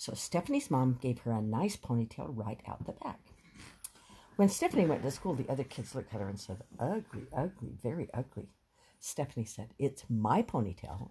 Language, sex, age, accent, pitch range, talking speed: English, female, 60-79, American, 115-175 Hz, 185 wpm